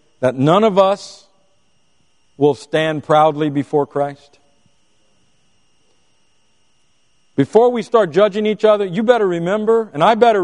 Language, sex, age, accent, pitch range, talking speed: English, male, 50-69, American, 120-180 Hz, 120 wpm